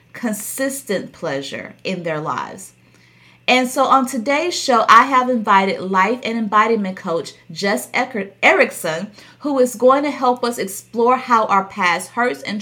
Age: 30-49